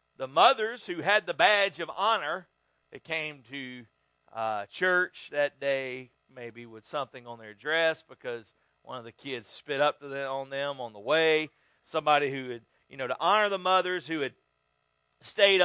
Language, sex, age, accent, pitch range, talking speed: English, male, 40-59, American, 115-170 Hz, 180 wpm